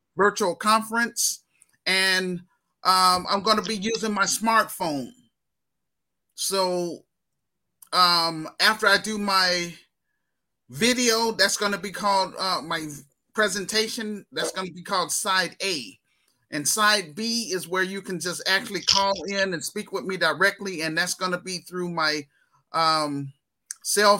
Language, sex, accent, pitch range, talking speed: English, male, American, 175-210 Hz, 145 wpm